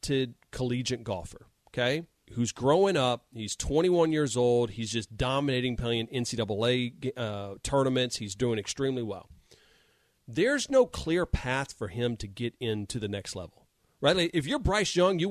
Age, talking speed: 40-59, 155 wpm